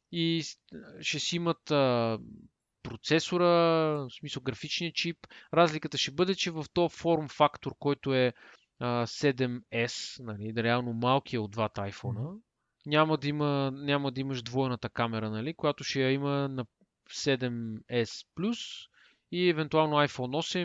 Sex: male